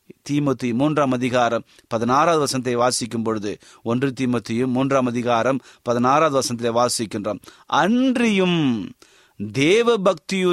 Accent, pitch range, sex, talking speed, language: native, 130-190 Hz, male, 85 wpm, Tamil